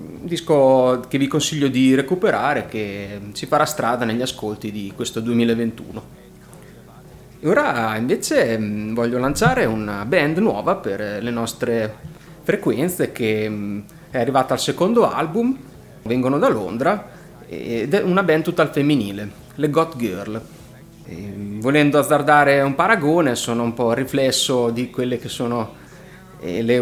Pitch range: 110-145 Hz